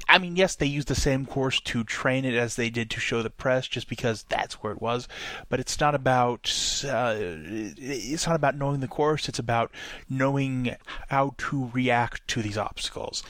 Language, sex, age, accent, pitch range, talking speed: English, male, 30-49, American, 120-145 Hz, 200 wpm